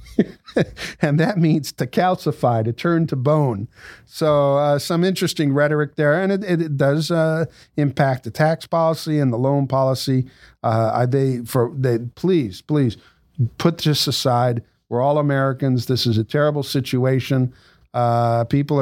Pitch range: 125-150 Hz